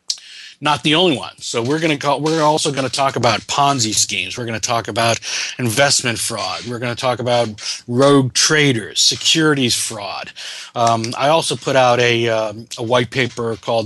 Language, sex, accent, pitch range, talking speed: English, male, American, 110-135 Hz, 175 wpm